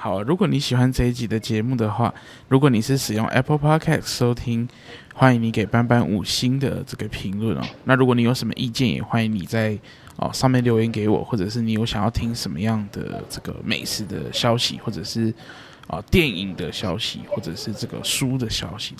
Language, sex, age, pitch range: Chinese, male, 20-39, 110-125 Hz